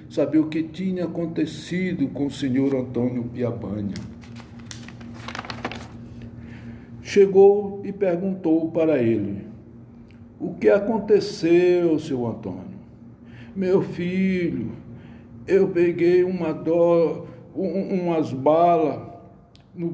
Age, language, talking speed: 60-79, Portuguese, 90 wpm